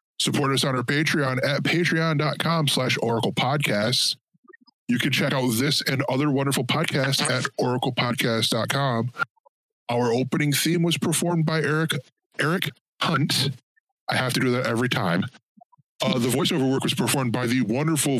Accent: American